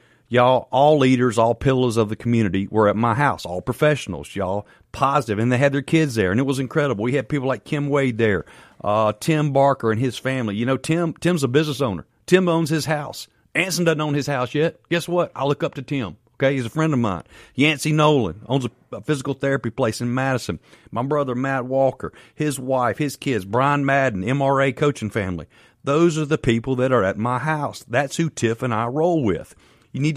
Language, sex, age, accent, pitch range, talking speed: English, male, 40-59, American, 100-140 Hz, 215 wpm